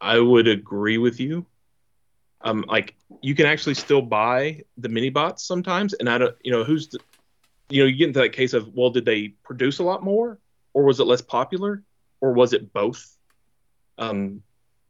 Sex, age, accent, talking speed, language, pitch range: male, 30-49, American, 195 wpm, English, 105-125 Hz